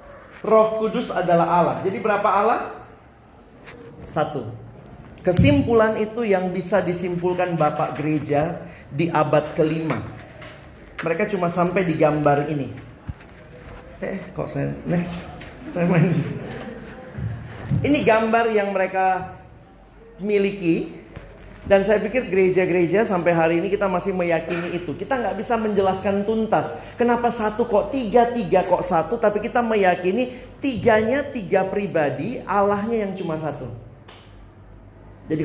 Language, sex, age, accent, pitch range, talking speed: Indonesian, male, 30-49, native, 155-220 Hz, 115 wpm